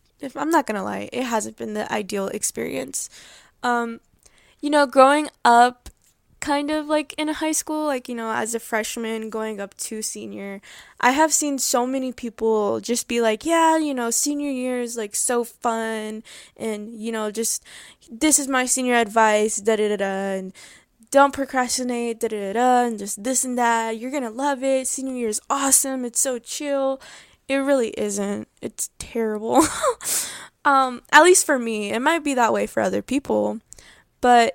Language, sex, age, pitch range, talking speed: English, female, 10-29, 220-280 Hz, 170 wpm